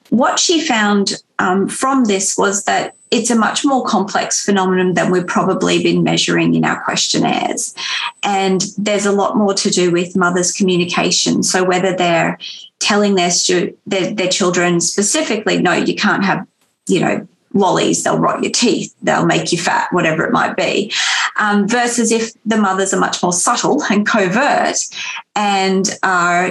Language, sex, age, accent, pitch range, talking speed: Spanish, female, 30-49, Australian, 180-215 Hz, 165 wpm